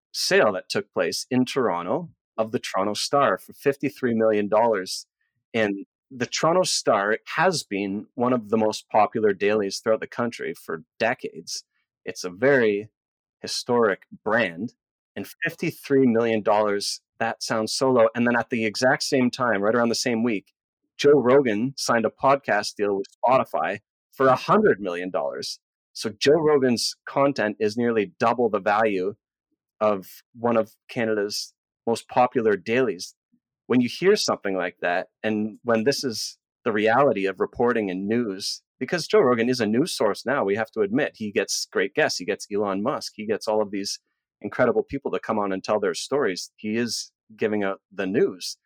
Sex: male